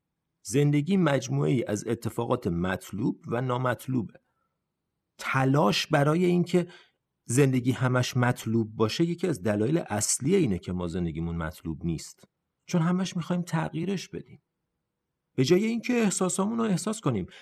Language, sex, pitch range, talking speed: Persian, male, 110-170 Hz, 125 wpm